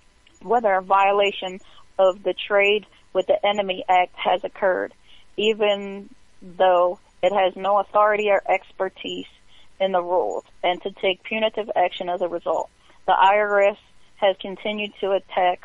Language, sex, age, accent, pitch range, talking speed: English, female, 30-49, American, 180-200 Hz, 140 wpm